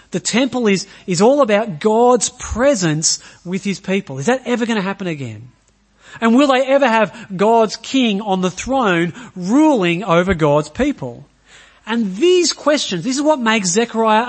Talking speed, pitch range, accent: 170 wpm, 150-240 Hz, Australian